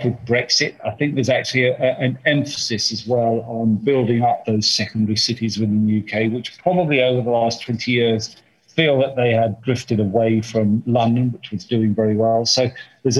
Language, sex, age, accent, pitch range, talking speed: English, male, 40-59, British, 115-145 Hz, 185 wpm